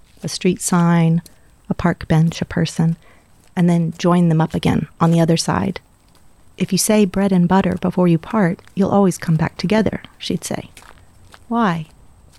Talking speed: 170 wpm